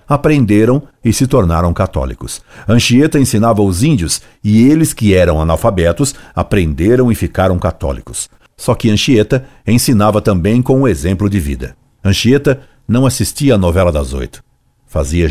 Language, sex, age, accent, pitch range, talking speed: Portuguese, male, 60-79, Brazilian, 90-120 Hz, 140 wpm